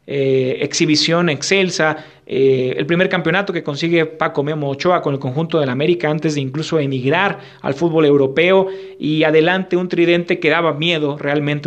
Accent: Mexican